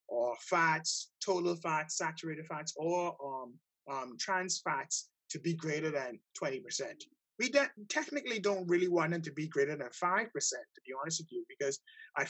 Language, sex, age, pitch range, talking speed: English, male, 30-49, 145-190 Hz, 180 wpm